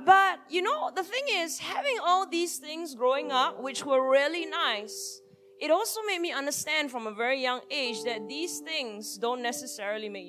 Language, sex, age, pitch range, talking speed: English, female, 20-39, 260-355 Hz, 185 wpm